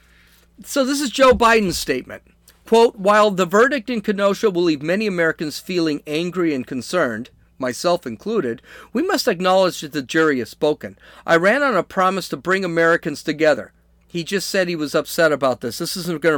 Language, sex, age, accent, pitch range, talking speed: English, male, 50-69, American, 150-200 Hz, 185 wpm